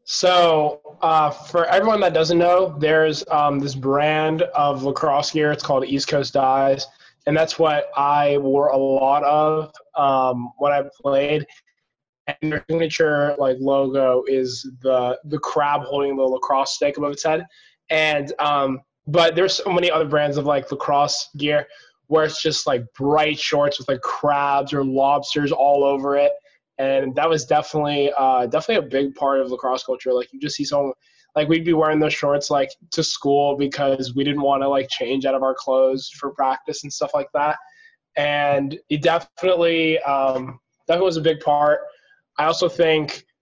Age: 20-39